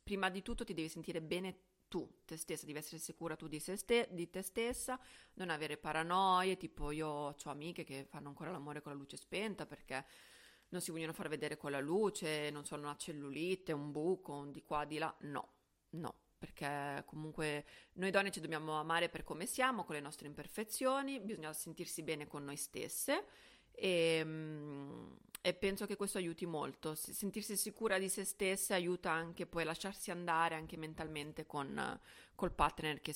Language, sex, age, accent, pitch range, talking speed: Italian, female, 30-49, native, 150-185 Hz, 175 wpm